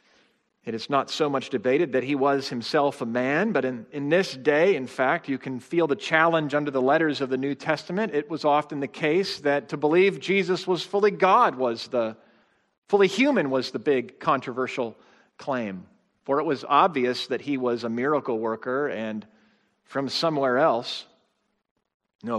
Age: 40-59